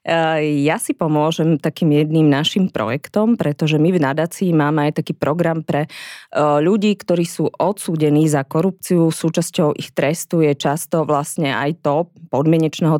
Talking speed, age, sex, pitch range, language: 145 wpm, 20-39, female, 150-175 Hz, Slovak